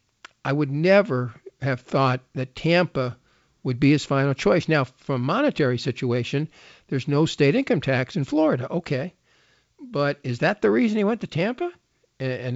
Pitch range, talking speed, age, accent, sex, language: 125-155 Hz, 165 wpm, 50-69, American, male, English